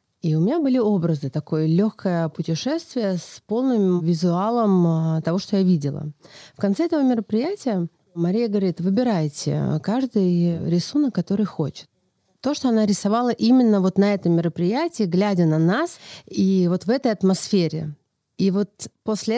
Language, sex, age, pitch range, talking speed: Russian, female, 30-49, 160-205 Hz, 140 wpm